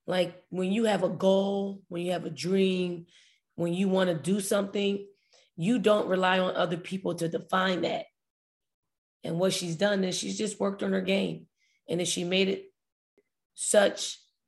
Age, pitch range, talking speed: 20-39, 170-205 Hz, 175 wpm